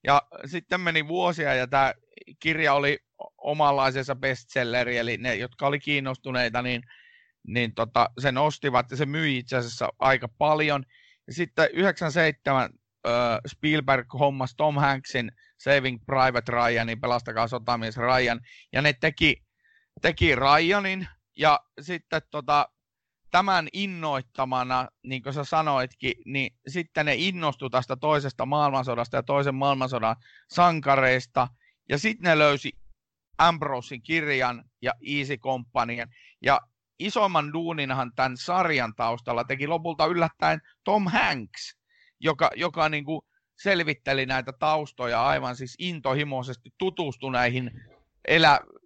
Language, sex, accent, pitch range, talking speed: Finnish, male, native, 125-155 Hz, 120 wpm